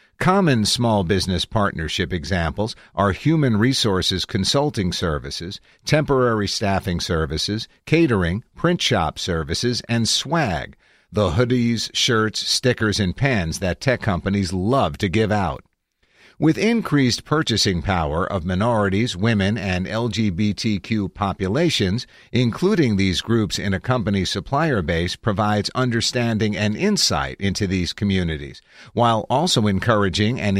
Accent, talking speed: American, 120 wpm